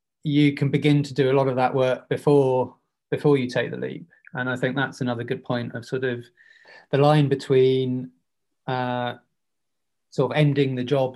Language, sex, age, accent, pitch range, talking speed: English, male, 20-39, British, 120-135 Hz, 190 wpm